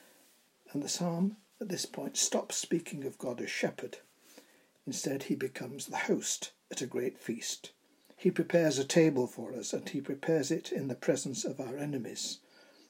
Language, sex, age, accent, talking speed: English, male, 60-79, British, 170 wpm